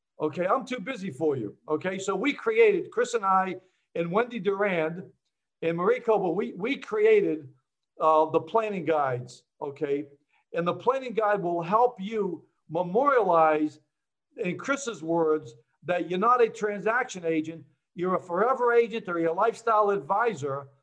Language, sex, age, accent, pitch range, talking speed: English, male, 60-79, American, 165-235 Hz, 150 wpm